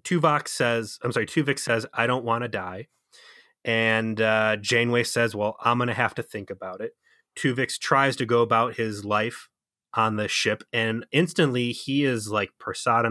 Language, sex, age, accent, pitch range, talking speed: English, male, 30-49, American, 110-130 Hz, 185 wpm